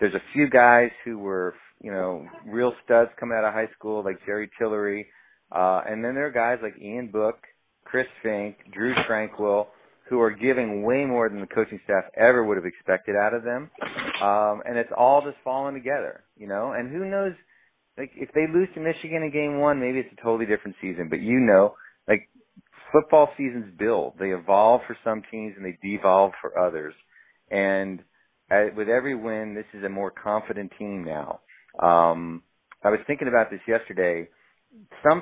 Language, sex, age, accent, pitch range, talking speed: English, male, 30-49, American, 100-125 Hz, 185 wpm